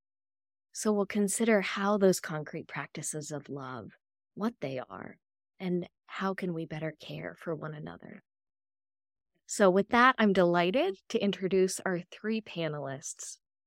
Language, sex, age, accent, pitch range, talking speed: English, female, 20-39, American, 155-195 Hz, 135 wpm